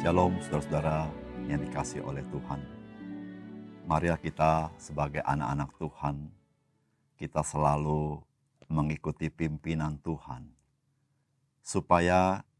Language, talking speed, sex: Indonesian, 80 wpm, male